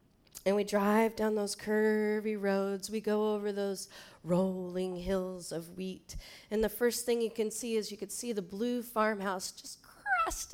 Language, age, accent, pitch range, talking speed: English, 30-49, American, 205-245 Hz, 175 wpm